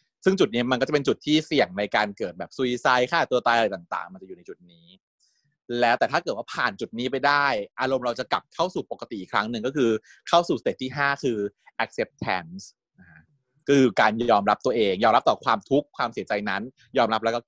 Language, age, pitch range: Thai, 20-39, 115-155 Hz